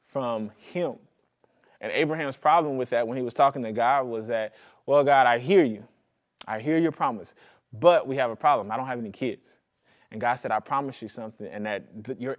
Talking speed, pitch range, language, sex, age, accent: 220 wpm, 125-150 Hz, English, male, 20-39, American